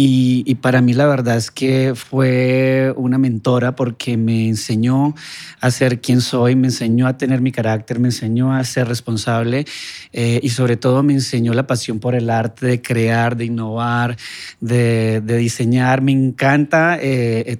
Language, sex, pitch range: Spanish, male, 120-140 Hz